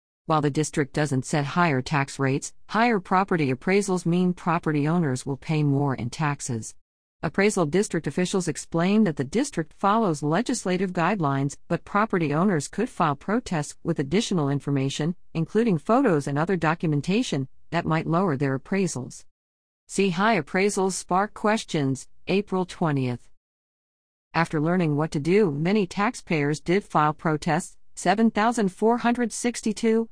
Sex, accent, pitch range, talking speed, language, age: female, American, 145-195 Hz, 130 wpm, English, 50-69